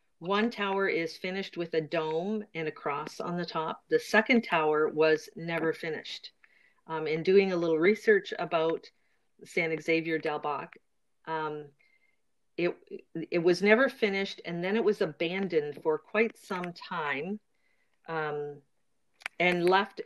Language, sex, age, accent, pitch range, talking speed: English, female, 50-69, American, 160-205 Hz, 145 wpm